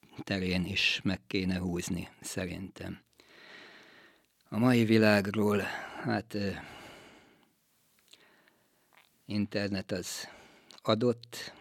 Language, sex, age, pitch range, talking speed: Hungarian, male, 50-69, 95-105 Hz, 65 wpm